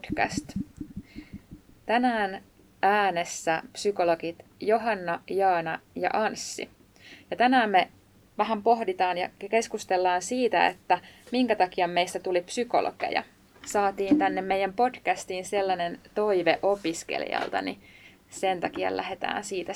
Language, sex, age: Finnish, female, 20-39